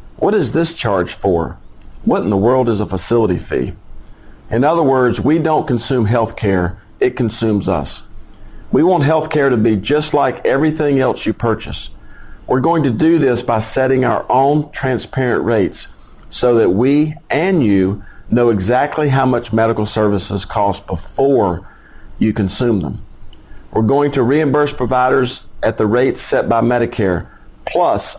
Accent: American